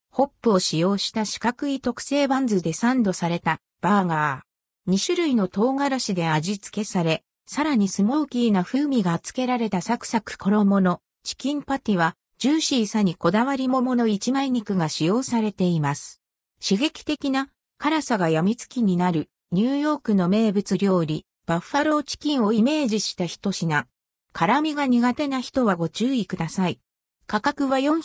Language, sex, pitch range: Japanese, female, 180-260 Hz